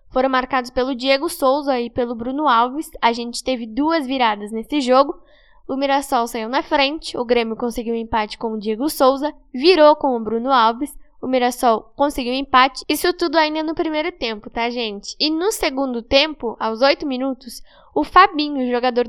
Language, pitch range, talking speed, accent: Portuguese, 245-295 Hz, 185 wpm, Brazilian